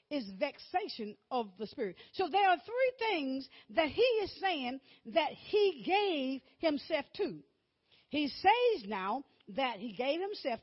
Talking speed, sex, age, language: 145 wpm, female, 50-69, English